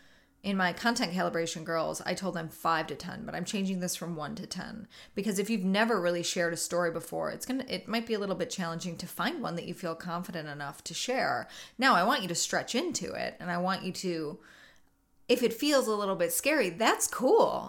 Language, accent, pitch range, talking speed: English, American, 175-230 Hz, 240 wpm